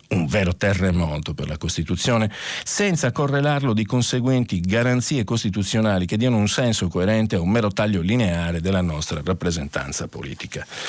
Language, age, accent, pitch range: Italian, 50-69, native, 95-140 Hz